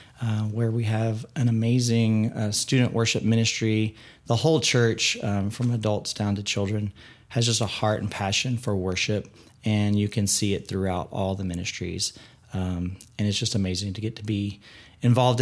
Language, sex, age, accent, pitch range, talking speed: English, male, 30-49, American, 110-125 Hz, 180 wpm